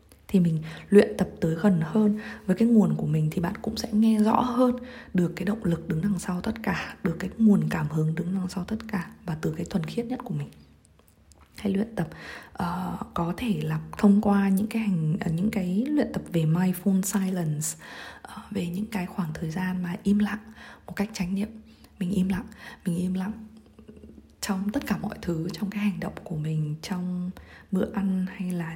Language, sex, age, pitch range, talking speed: Vietnamese, female, 20-39, 165-205 Hz, 210 wpm